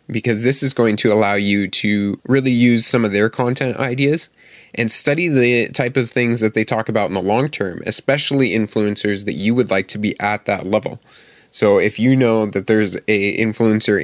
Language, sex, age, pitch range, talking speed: English, male, 20-39, 100-120 Hz, 205 wpm